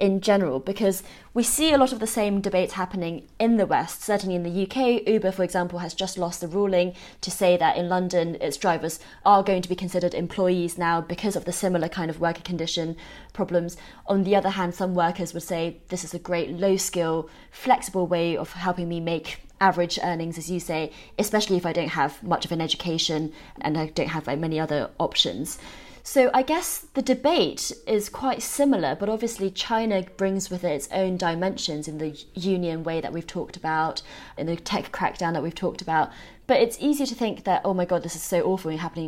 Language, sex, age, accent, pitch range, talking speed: English, female, 20-39, British, 165-195 Hz, 210 wpm